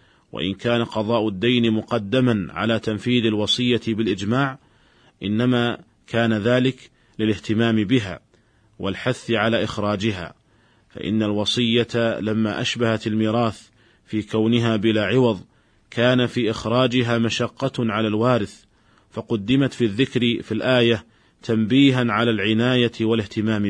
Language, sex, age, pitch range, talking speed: Arabic, male, 40-59, 100-120 Hz, 105 wpm